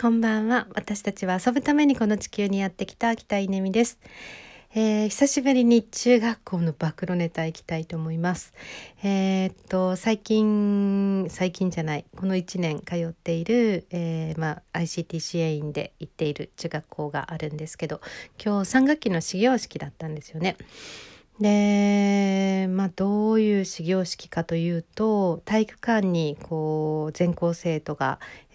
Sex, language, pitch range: female, Japanese, 165-215 Hz